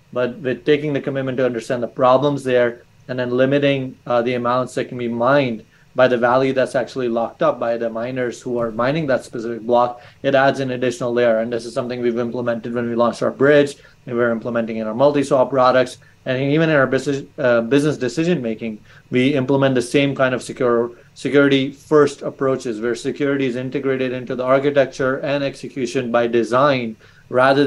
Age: 30-49